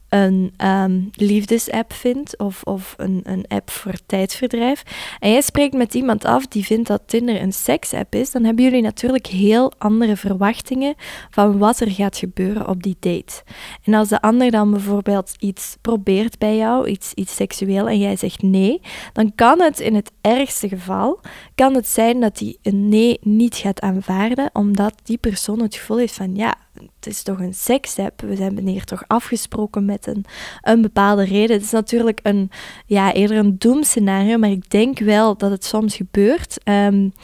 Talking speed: 180 wpm